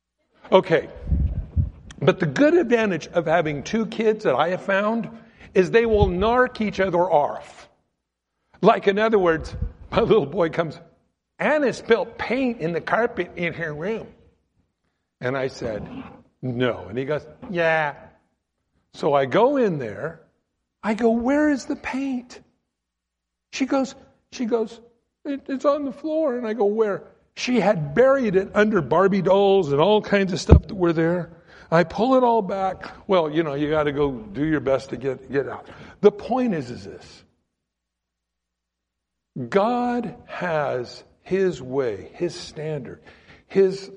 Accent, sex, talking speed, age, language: American, male, 155 wpm, 60-79, English